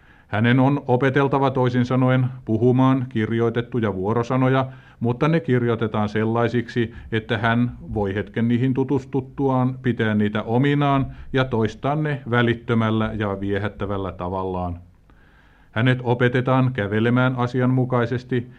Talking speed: 105 wpm